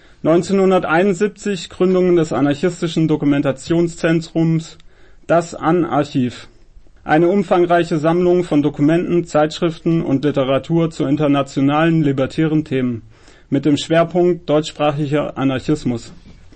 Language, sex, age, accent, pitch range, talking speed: German, male, 30-49, German, 140-175 Hz, 85 wpm